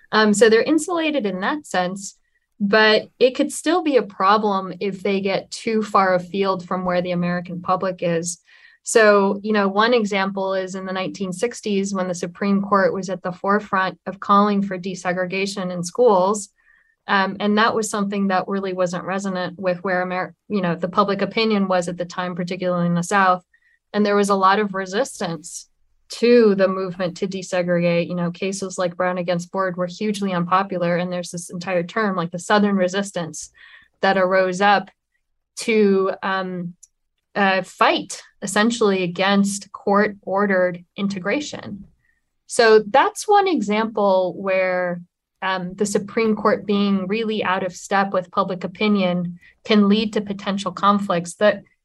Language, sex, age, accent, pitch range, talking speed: English, female, 20-39, American, 185-210 Hz, 160 wpm